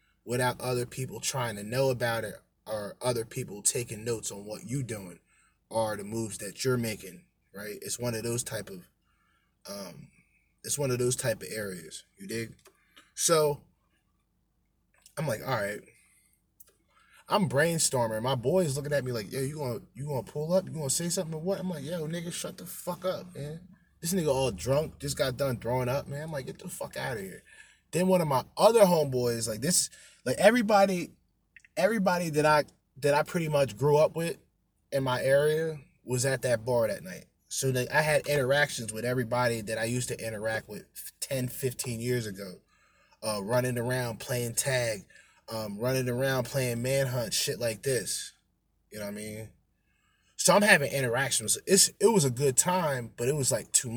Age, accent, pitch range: 20-39, American, 120-150 Hz